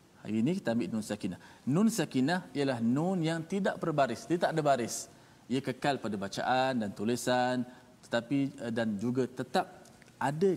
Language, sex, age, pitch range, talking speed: Malayalam, male, 40-59, 120-160 Hz, 160 wpm